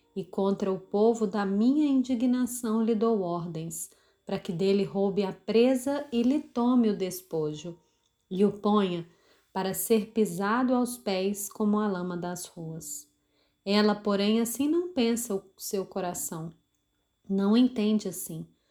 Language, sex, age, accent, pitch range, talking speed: Portuguese, female, 30-49, Brazilian, 195-240 Hz, 145 wpm